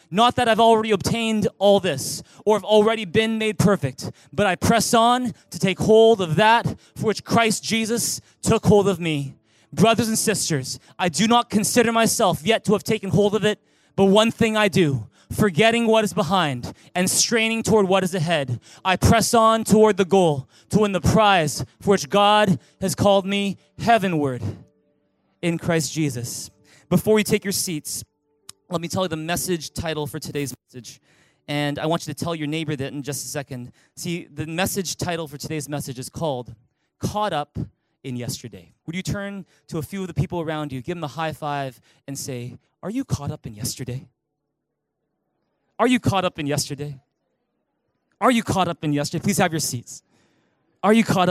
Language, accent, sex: English, American, male